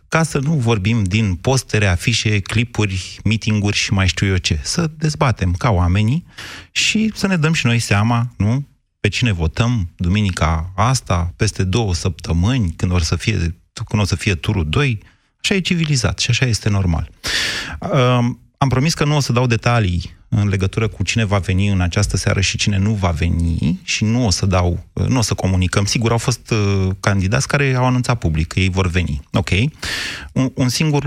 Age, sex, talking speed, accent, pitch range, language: 30-49, male, 185 wpm, native, 95-125 Hz, Romanian